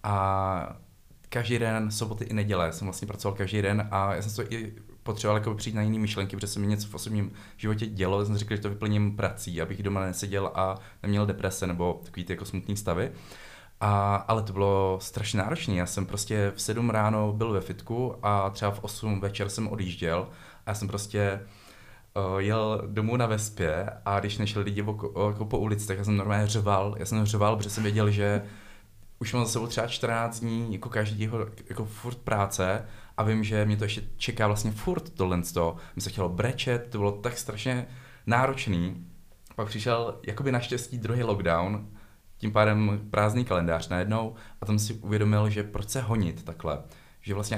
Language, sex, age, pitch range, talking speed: Czech, male, 20-39, 100-110 Hz, 190 wpm